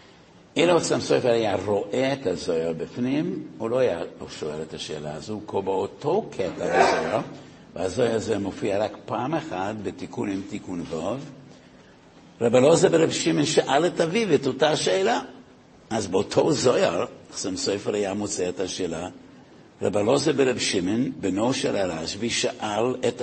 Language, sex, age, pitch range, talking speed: Hebrew, male, 60-79, 105-145 Hz, 145 wpm